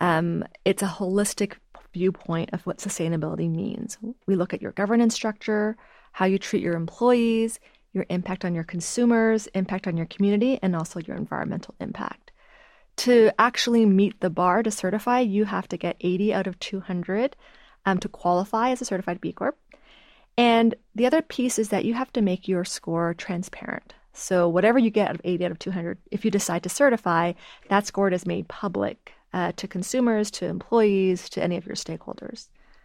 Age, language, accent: 30-49, English, American